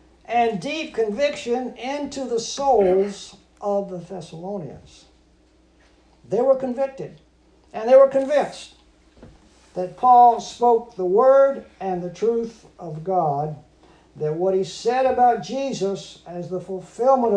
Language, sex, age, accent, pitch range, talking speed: English, male, 60-79, American, 200-265 Hz, 120 wpm